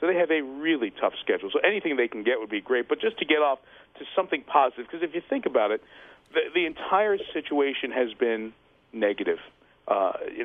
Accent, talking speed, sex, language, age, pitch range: American, 220 wpm, male, English, 50-69, 120-155 Hz